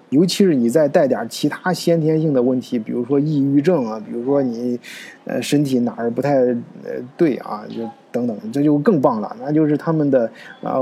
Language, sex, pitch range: Chinese, male, 135-180 Hz